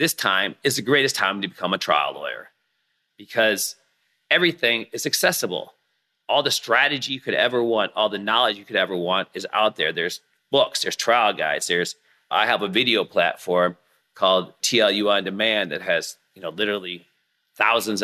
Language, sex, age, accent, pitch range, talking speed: English, male, 40-59, American, 110-160 Hz, 175 wpm